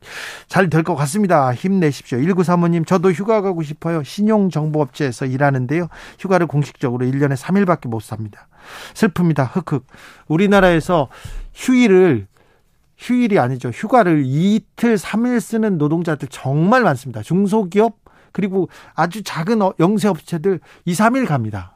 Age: 40-59